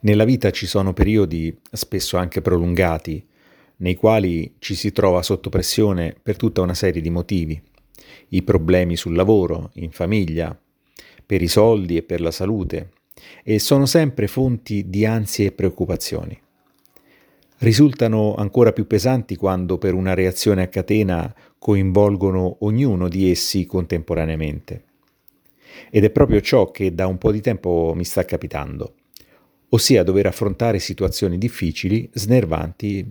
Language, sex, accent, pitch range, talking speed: Italian, male, native, 90-110 Hz, 140 wpm